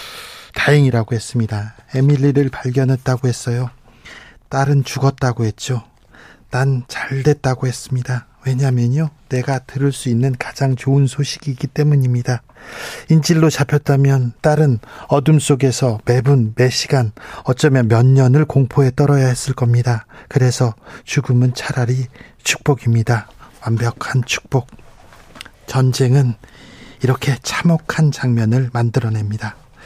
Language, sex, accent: Korean, male, native